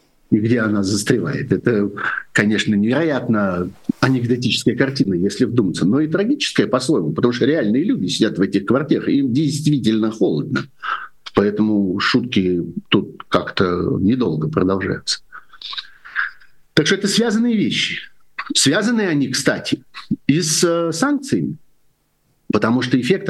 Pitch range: 110-170 Hz